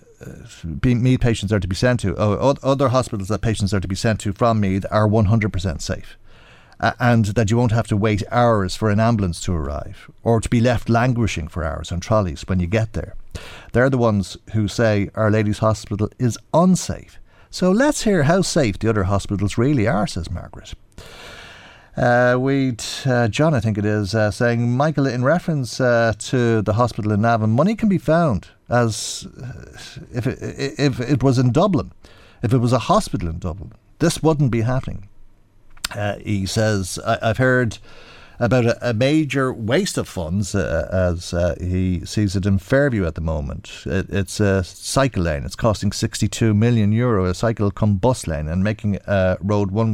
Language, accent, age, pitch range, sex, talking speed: English, Irish, 50-69, 95-120 Hz, male, 185 wpm